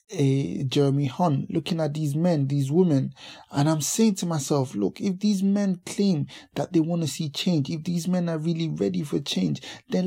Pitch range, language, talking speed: 145-205 Hz, English, 205 wpm